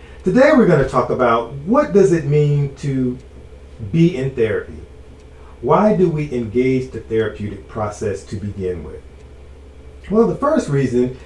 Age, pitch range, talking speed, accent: 40-59, 105-155 Hz, 145 wpm, American